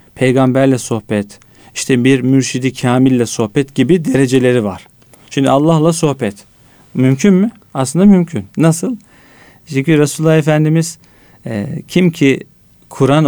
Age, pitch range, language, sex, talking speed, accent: 40-59, 120-150 Hz, Turkish, male, 115 wpm, native